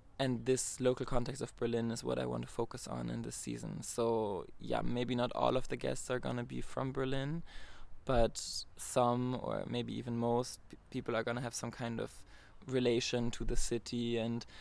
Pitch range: 105-125 Hz